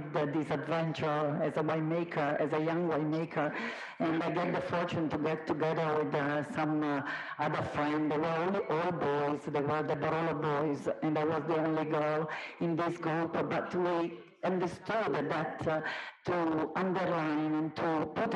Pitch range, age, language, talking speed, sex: 150-170 Hz, 50-69, English, 170 wpm, female